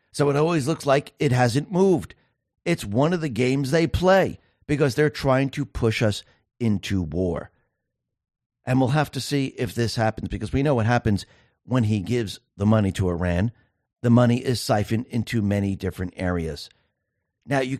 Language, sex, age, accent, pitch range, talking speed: English, male, 50-69, American, 100-135 Hz, 180 wpm